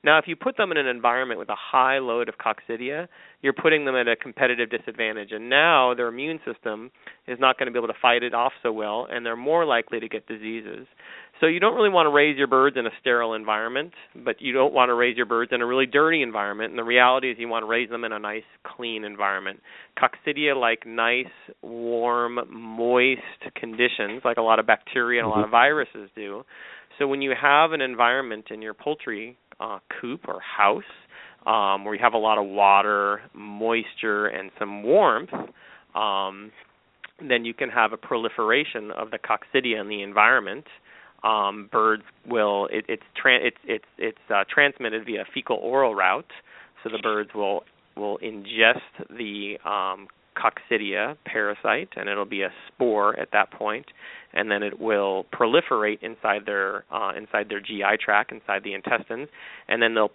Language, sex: English, male